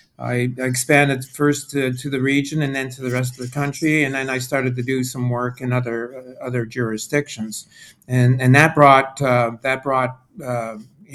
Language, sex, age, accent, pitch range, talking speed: English, male, 60-79, American, 125-145 Hz, 195 wpm